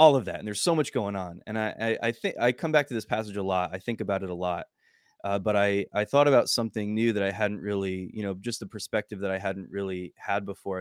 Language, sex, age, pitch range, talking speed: English, male, 20-39, 100-115 Hz, 280 wpm